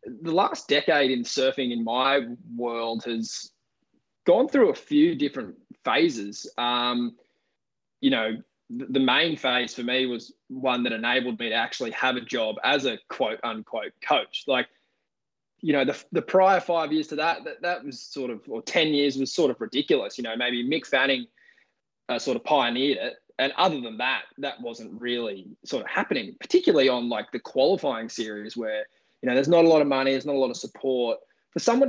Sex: male